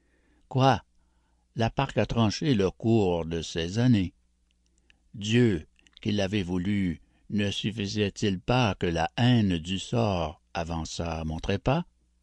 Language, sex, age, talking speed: French, male, 60-79, 130 wpm